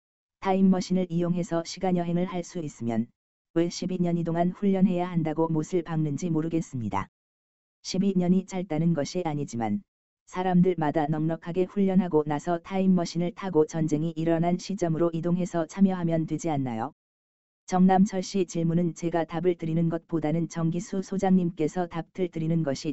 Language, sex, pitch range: Korean, female, 155-180 Hz